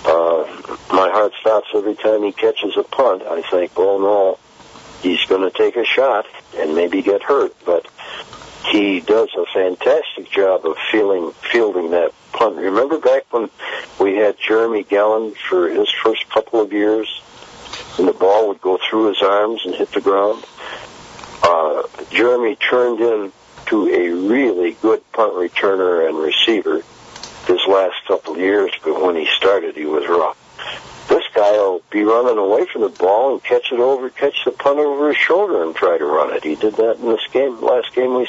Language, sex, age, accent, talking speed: English, male, 60-79, American, 180 wpm